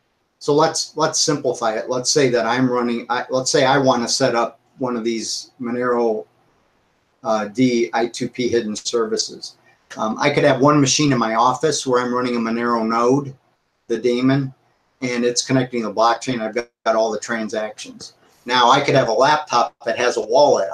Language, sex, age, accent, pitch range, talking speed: English, male, 50-69, American, 120-140 Hz, 190 wpm